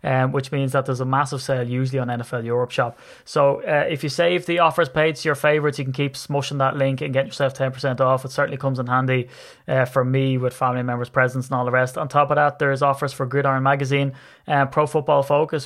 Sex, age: male, 20-39